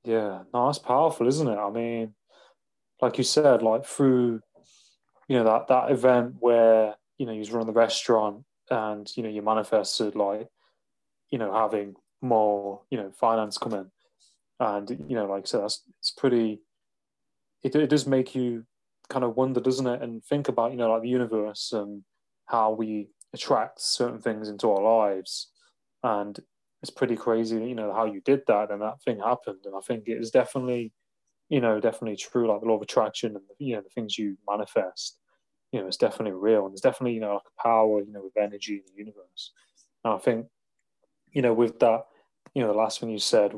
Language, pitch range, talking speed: English, 105-120 Hz, 200 wpm